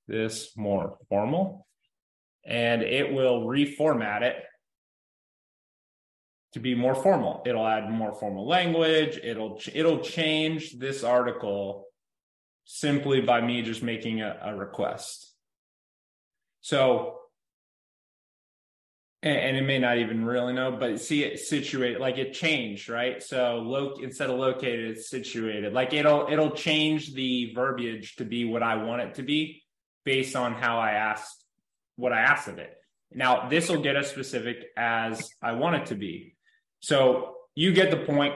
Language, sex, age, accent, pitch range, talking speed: English, male, 20-39, American, 115-140 Hz, 150 wpm